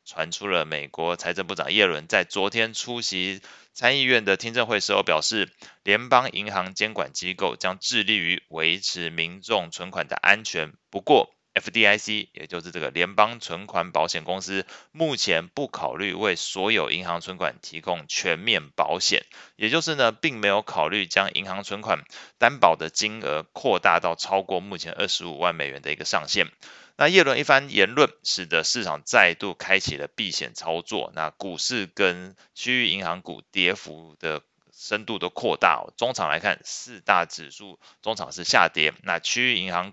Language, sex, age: Chinese, male, 20-39